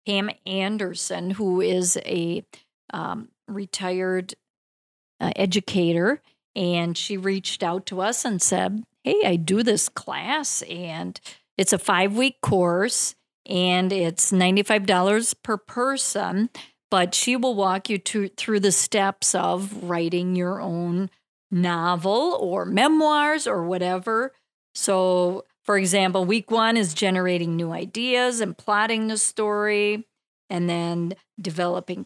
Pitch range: 185-225 Hz